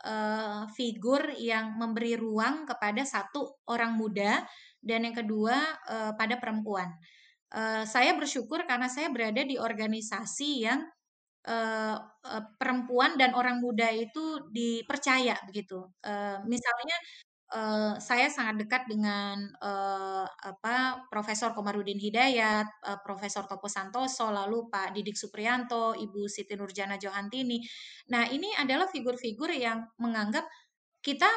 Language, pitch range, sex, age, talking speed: Indonesian, 210-265 Hz, female, 20-39, 120 wpm